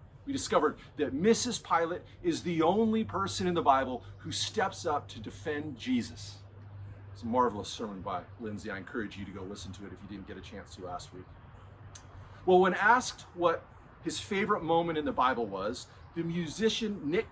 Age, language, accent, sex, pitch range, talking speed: 40-59, English, American, male, 120-190 Hz, 190 wpm